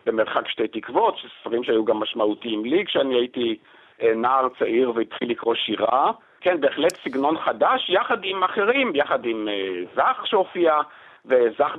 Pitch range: 130-210 Hz